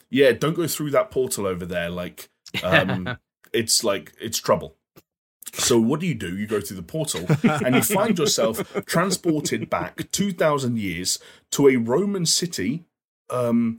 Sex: male